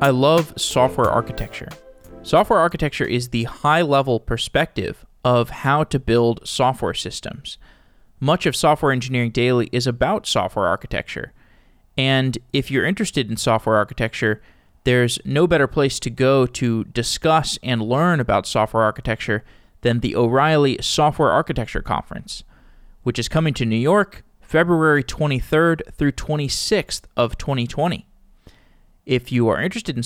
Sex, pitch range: male, 120-150 Hz